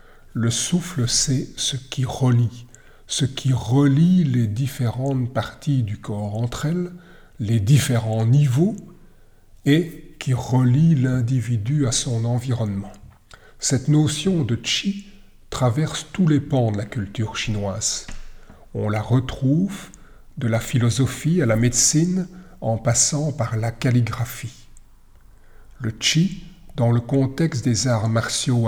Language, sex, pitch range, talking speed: French, male, 115-145 Hz, 125 wpm